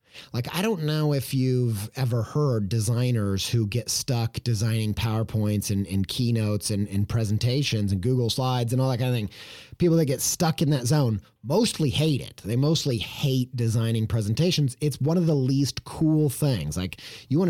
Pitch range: 115-145 Hz